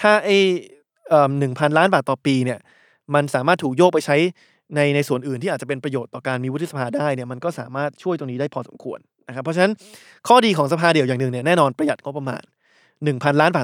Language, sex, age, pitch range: Thai, male, 20-39, 135-175 Hz